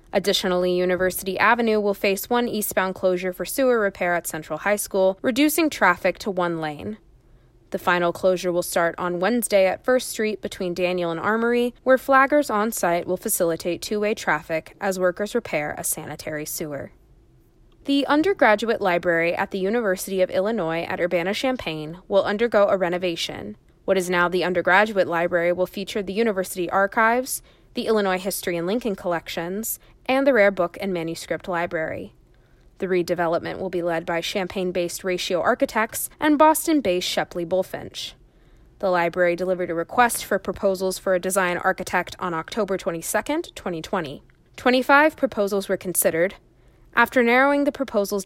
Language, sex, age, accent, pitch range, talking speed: English, female, 20-39, American, 175-220 Hz, 150 wpm